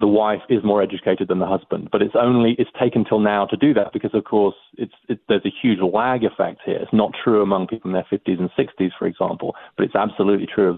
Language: English